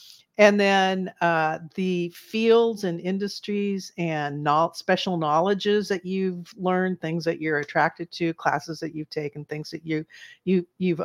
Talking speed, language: 135 wpm, English